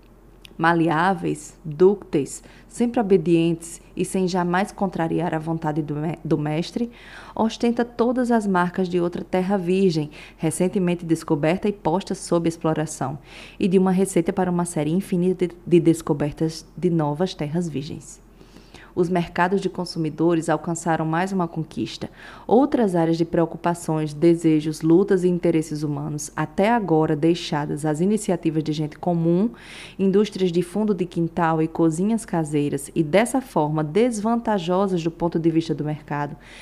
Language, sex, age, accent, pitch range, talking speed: Portuguese, female, 20-39, Brazilian, 160-190 Hz, 135 wpm